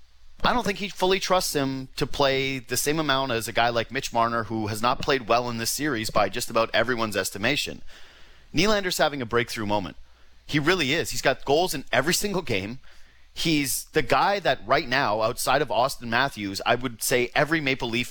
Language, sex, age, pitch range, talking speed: English, male, 30-49, 110-165 Hz, 205 wpm